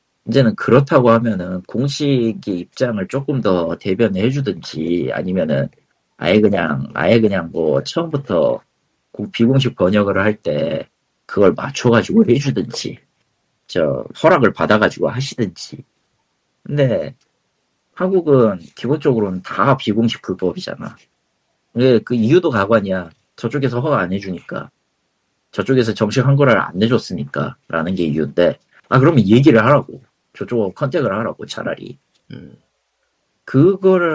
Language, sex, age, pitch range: Korean, male, 40-59, 95-140 Hz